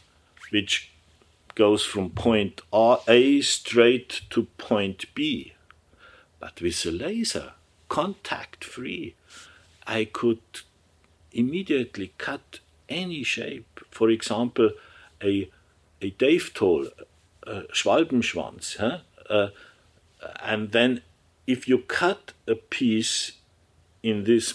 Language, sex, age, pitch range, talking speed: German, male, 60-79, 80-120 Hz, 90 wpm